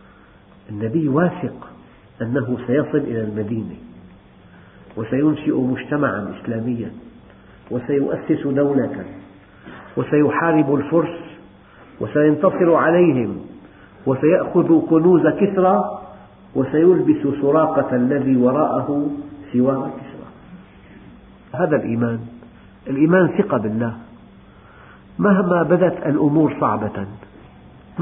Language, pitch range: Arabic, 115-155 Hz